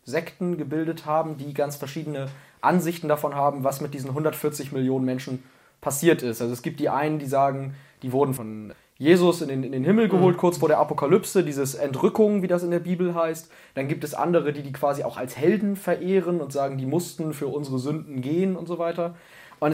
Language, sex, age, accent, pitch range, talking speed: German, male, 20-39, German, 130-170 Hz, 205 wpm